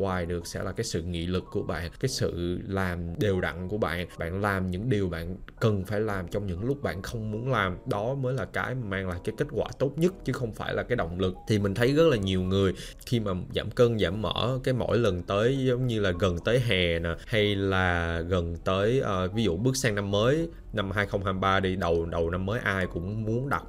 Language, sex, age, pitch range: English, male, 20-39, 90-115 Hz